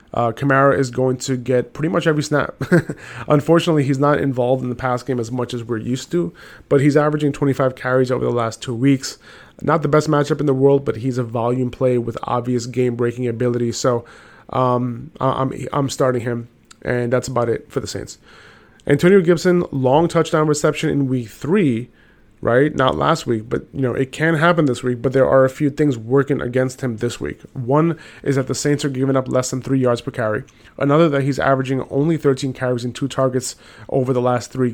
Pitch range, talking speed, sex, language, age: 125-145 Hz, 210 wpm, male, English, 30-49